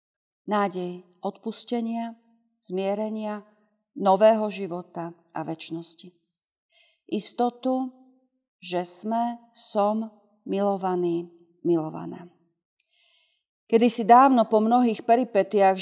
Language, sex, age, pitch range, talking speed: Slovak, female, 40-59, 190-230 Hz, 70 wpm